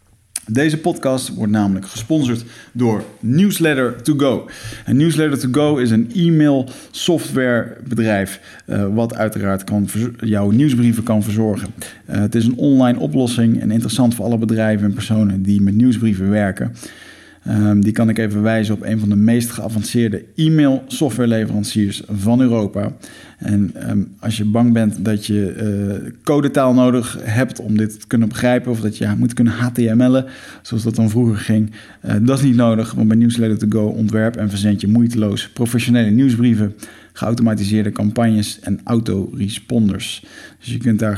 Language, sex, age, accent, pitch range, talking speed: Dutch, male, 50-69, Dutch, 105-120 Hz, 155 wpm